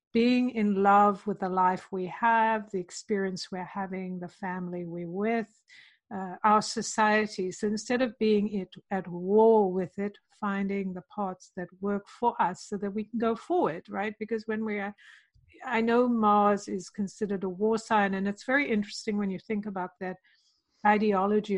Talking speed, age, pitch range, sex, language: 175 wpm, 60-79, 190-215 Hz, female, English